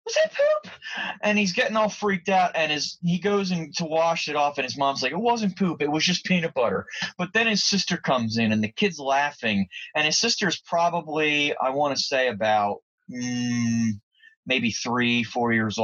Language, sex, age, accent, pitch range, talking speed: English, male, 30-49, American, 135-200 Hz, 205 wpm